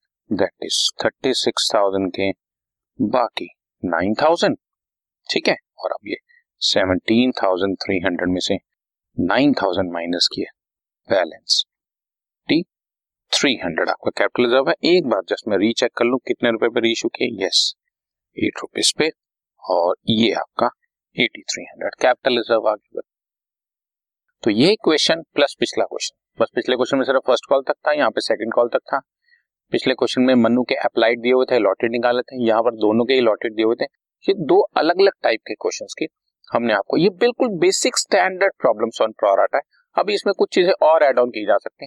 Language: Hindi